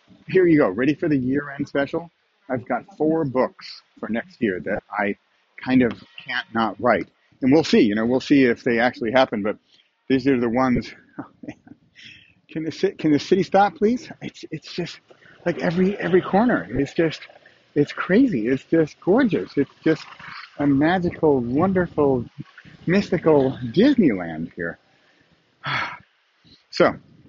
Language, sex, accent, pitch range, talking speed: English, male, American, 130-175 Hz, 145 wpm